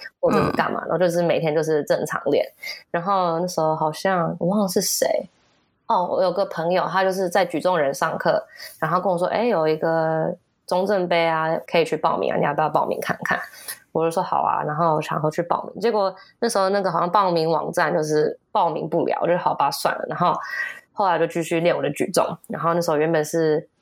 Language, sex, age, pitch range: Chinese, female, 20-39, 160-205 Hz